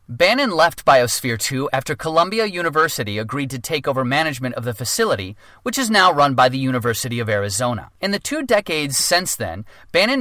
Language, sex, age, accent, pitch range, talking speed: English, male, 30-49, American, 130-170 Hz, 180 wpm